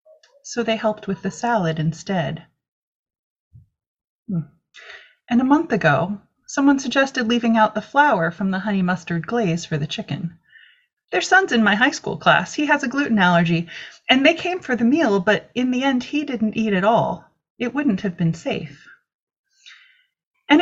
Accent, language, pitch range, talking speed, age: American, English, 170-280 Hz, 170 wpm, 30-49